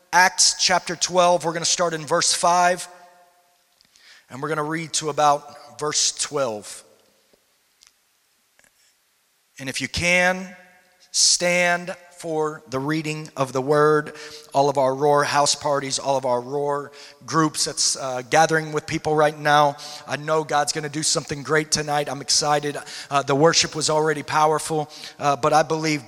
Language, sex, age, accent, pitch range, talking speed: English, male, 30-49, American, 135-155 Hz, 155 wpm